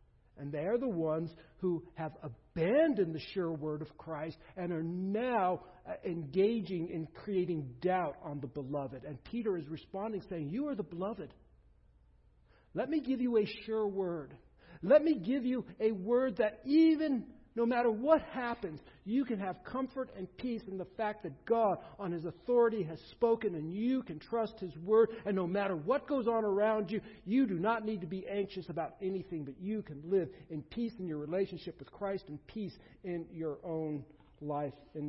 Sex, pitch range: male, 155-210 Hz